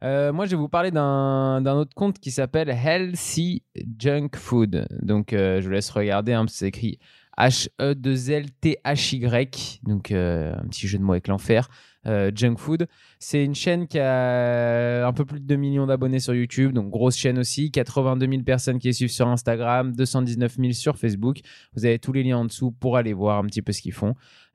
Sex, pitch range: male, 110-140 Hz